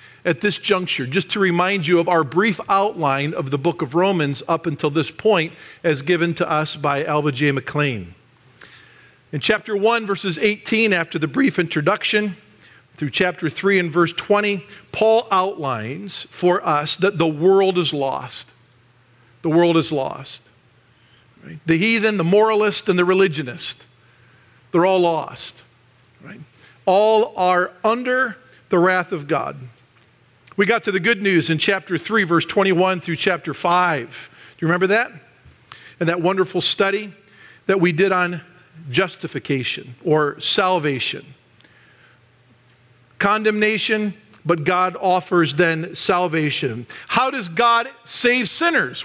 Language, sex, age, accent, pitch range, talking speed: English, male, 50-69, American, 145-200 Hz, 140 wpm